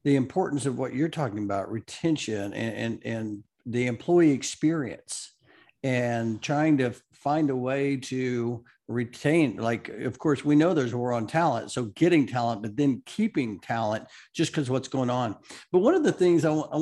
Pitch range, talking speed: 125-155 Hz, 185 wpm